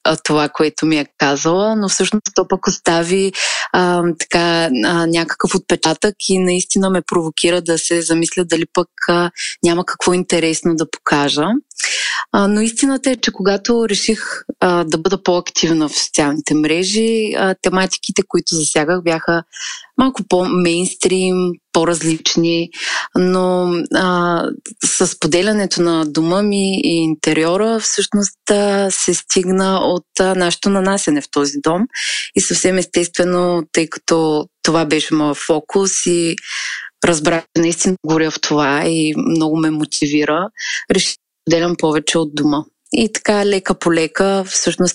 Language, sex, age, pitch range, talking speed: Bulgarian, female, 20-39, 160-190 Hz, 135 wpm